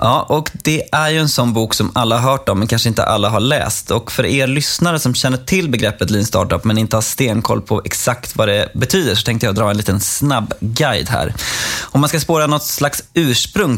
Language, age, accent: Swedish, 20-39, native